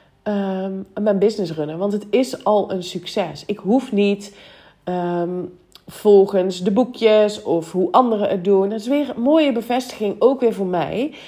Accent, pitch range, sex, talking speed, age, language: Dutch, 185-230 Hz, female, 160 wpm, 30-49, Dutch